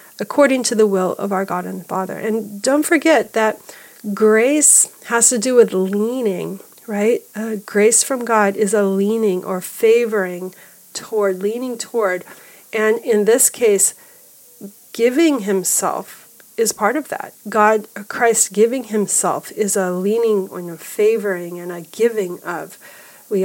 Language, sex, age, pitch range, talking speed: English, female, 40-59, 195-230 Hz, 145 wpm